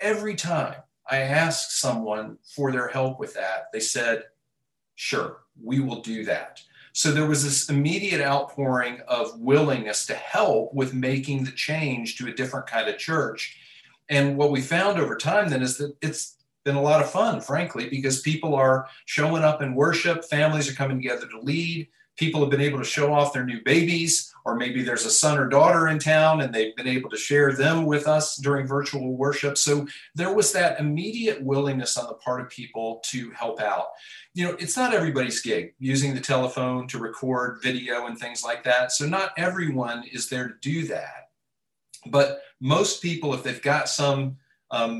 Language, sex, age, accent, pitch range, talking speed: English, male, 40-59, American, 125-155 Hz, 190 wpm